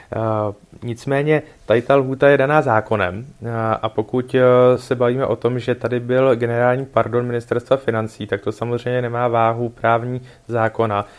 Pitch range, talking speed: 110-125 Hz, 145 wpm